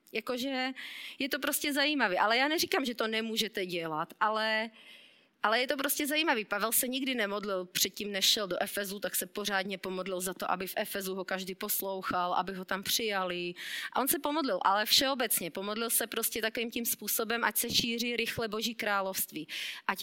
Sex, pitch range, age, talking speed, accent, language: female, 205-255 Hz, 30-49, 185 wpm, native, Czech